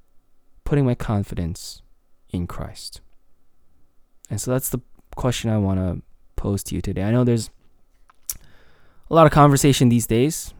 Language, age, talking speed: English, 20-39, 145 wpm